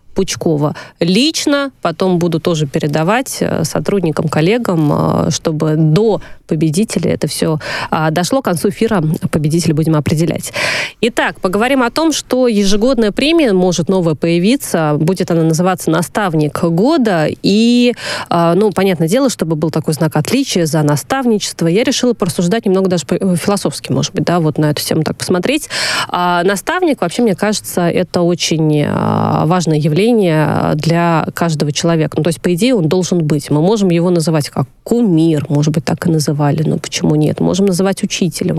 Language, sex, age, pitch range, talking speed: Russian, female, 20-39, 160-205 Hz, 150 wpm